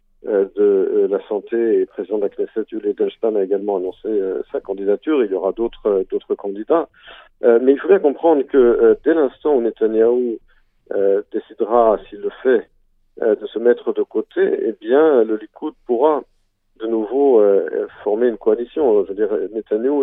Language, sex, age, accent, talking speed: Italian, male, 50-69, French, 160 wpm